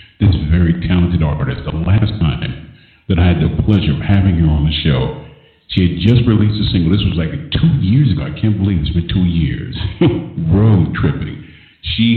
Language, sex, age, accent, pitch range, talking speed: English, male, 50-69, American, 85-105 Hz, 195 wpm